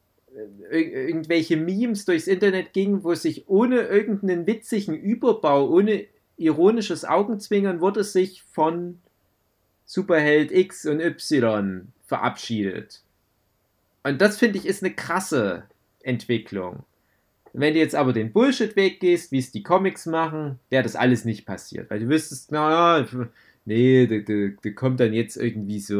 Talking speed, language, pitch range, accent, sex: 135 wpm, German, 115-185 Hz, German, male